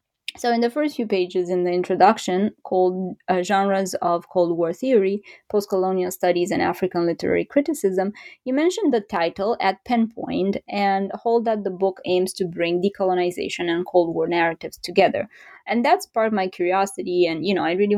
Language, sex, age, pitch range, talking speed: English, female, 20-39, 175-215 Hz, 175 wpm